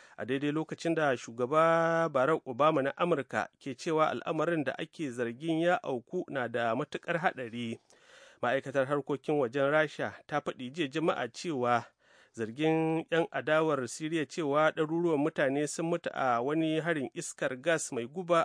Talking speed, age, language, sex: 145 wpm, 40-59, English, male